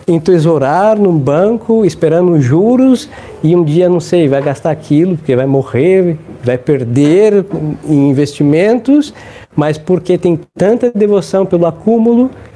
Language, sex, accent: Portuguese, male, Brazilian